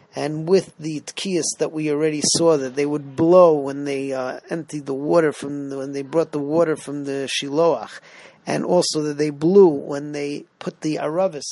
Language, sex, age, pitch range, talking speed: English, male, 40-59, 145-175 Hz, 195 wpm